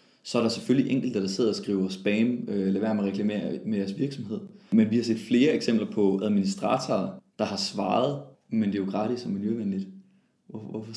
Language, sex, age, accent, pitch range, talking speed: English, male, 20-39, Danish, 100-135 Hz, 190 wpm